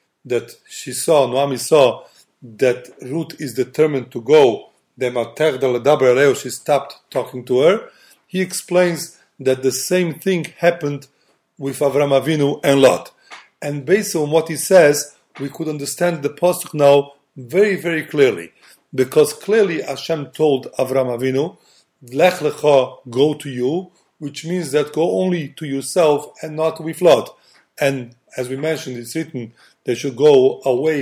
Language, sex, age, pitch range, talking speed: English, male, 40-59, 140-175 Hz, 145 wpm